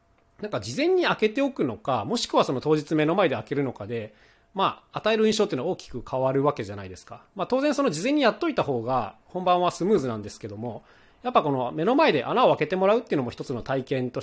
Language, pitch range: Japanese, 115-180 Hz